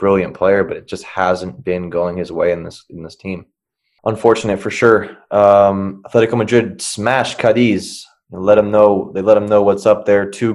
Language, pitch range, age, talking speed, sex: English, 95-110 Hz, 20-39, 200 wpm, male